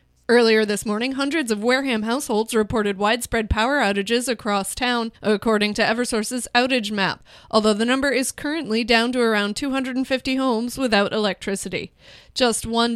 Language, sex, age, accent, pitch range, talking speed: English, female, 20-39, American, 210-250 Hz, 150 wpm